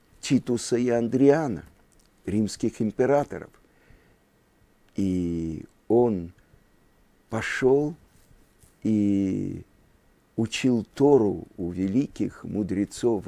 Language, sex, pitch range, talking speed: Russian, male, 100-140 Hz, 65 wpm